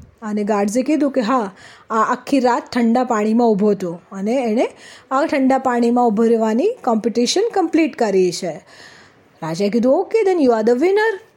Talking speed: 115 wpm